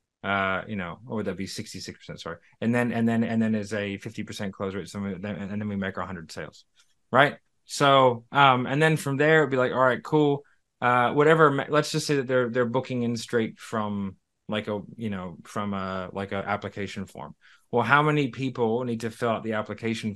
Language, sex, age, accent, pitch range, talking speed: English, male, 30-49, American, 105-125 Hz, 220 wpm